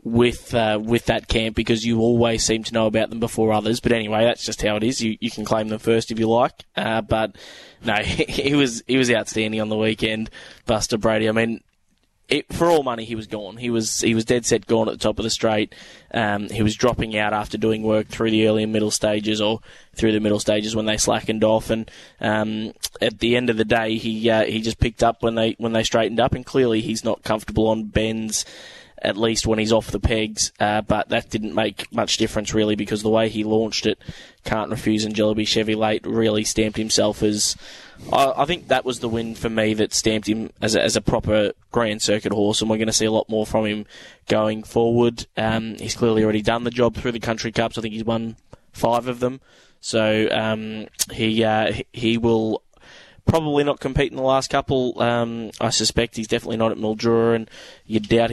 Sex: male